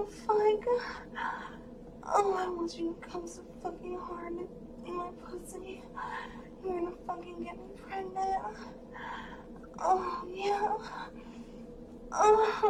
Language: English